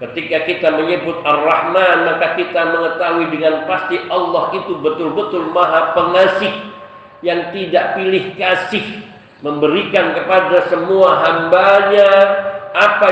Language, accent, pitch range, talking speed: Indonesian, native, 165-200 Hz, 105 wpm